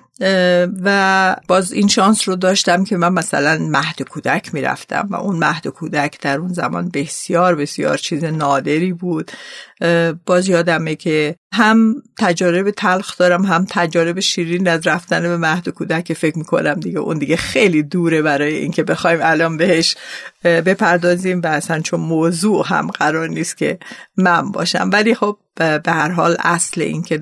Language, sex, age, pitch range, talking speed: Persian, female, 50-69, 155-185 Hz, 155 wpm